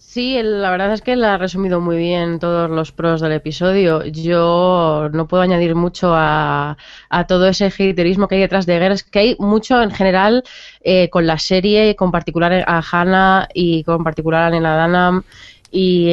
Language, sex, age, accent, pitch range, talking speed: Spanish, female, 20-39, Spanish, 170-195 Hz, 190 wpm